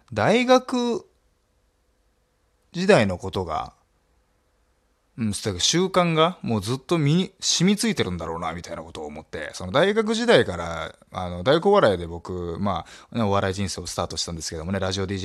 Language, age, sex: Japanese, 20-39, male